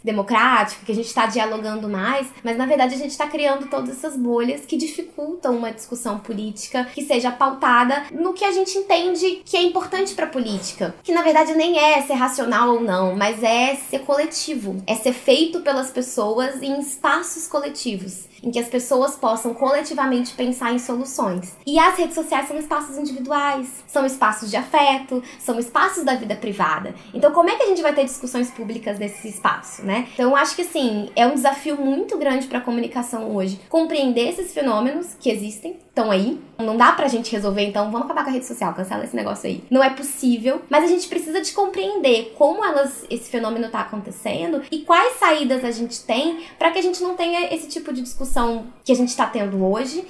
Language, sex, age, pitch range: Portuguese, female, 10-29, 235-315 Hz